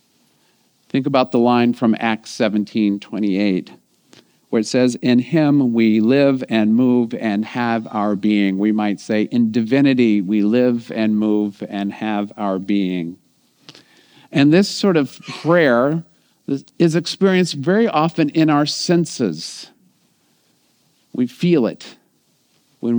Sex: male